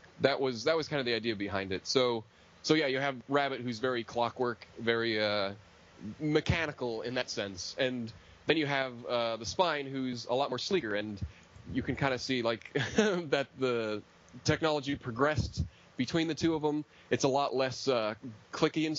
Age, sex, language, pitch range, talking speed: 30-49, male, English, 105-140 Hz, 190 wpm